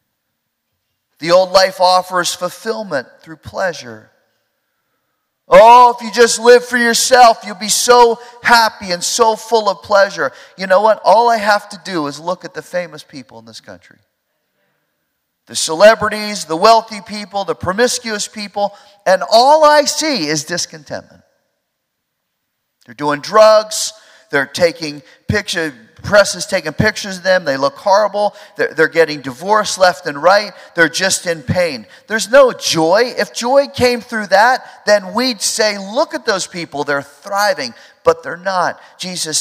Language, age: English, 40-59